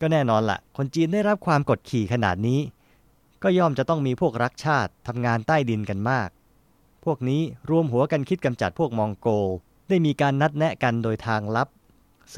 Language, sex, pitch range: Thai, male, 110-150 Hz